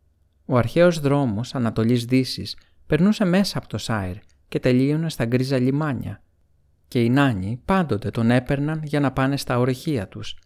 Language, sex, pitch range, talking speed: Greek, male, 85-140 Hz, 155 wpm